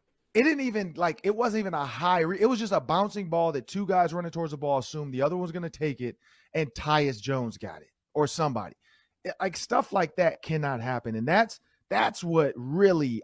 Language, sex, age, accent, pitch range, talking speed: English, male, 30-49, American, 135-195 Hz, 225 wpm